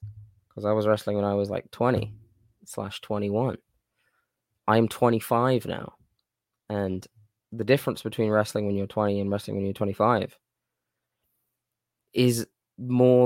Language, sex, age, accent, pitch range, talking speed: English, male, 10-29, British, 100-120 Hz, 130 wpm